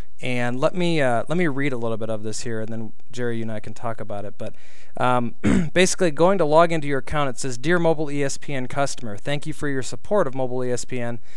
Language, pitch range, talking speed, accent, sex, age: English, 115-145 Hz, 245 wpm, American, male, 20-39